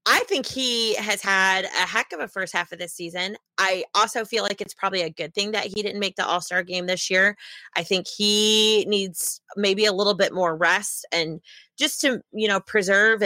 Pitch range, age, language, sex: 170-210 Hz, 30-49, English, female